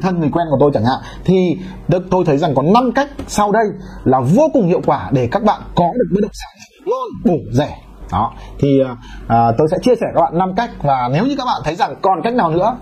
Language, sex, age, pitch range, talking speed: Vietnamese, male, 20-39, 150-200 Hz, 255 wpm